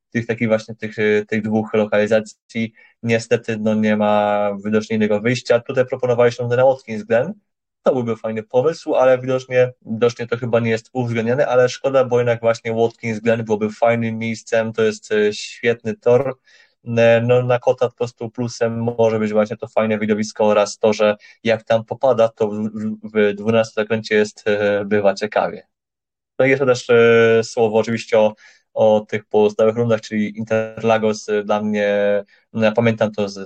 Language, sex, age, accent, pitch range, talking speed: Polish, male, 20-39, native, 105-115 Hz, 165 wpm